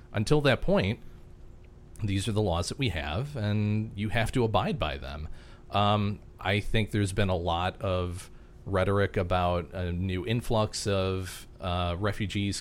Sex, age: male, 30-49